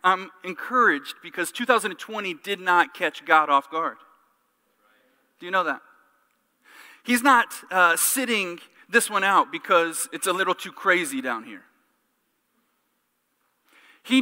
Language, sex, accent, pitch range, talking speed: English, male, American, 175-265 Hz, 125 wpm